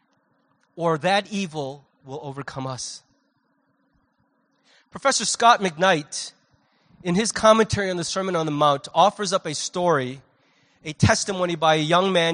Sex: male